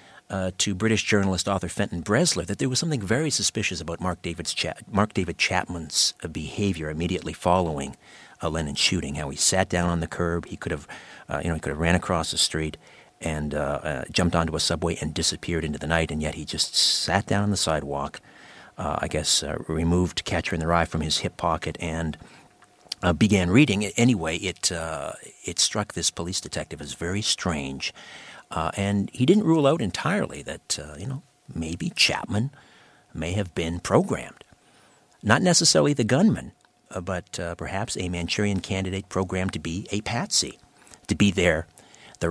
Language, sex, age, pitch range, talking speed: English, male, 50-69, 80-105 Hz, 190 wpm